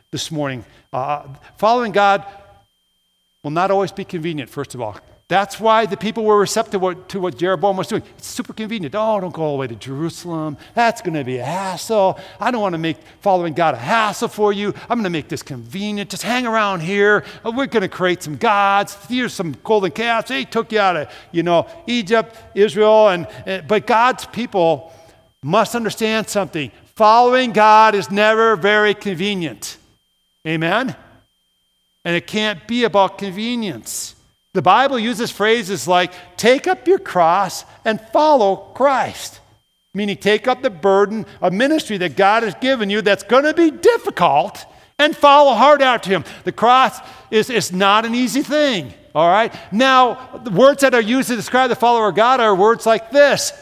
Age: 50-69